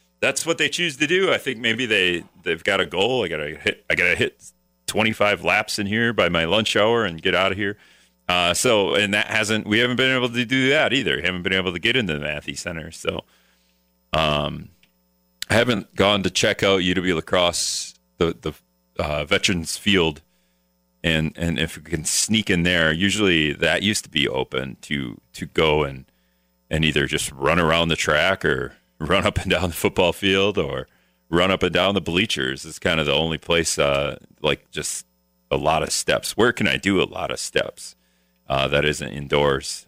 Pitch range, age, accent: 65-95 Hz, 40-59, American